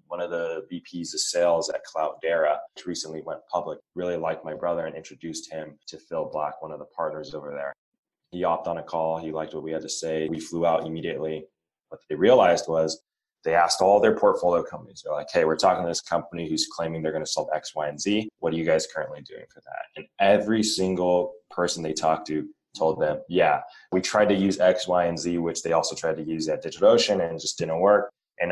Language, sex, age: English, male, 20-39